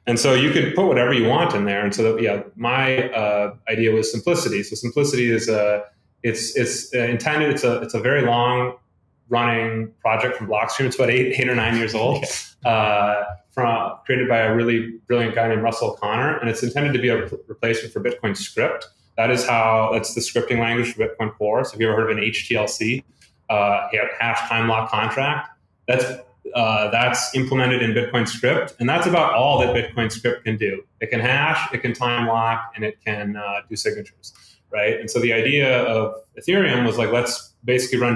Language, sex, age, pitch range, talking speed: English, male, 30-49, 110-125 Hz, 200 wpm